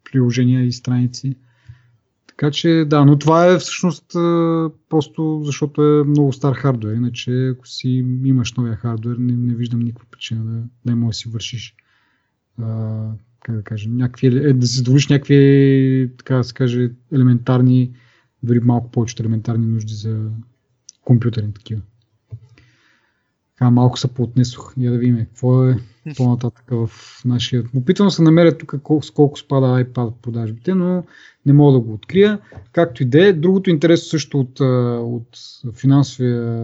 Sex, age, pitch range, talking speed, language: male, 30-49, 120-145 Hz, 150 wpm, Bulgarian